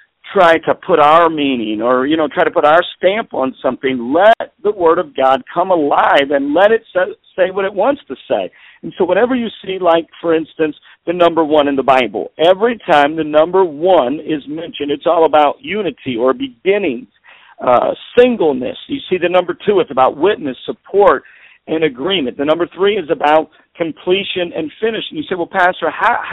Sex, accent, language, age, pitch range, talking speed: male, American, English, 50-69, 150-195 Hz, 195 wpm